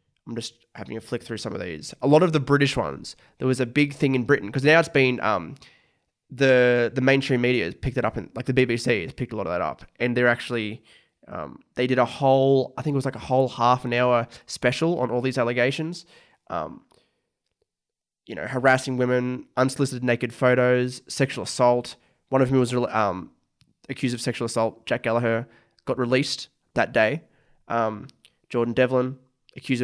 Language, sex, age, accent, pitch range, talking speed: English, male, 20-39, Australian, 120-135 Hz, 195 wpm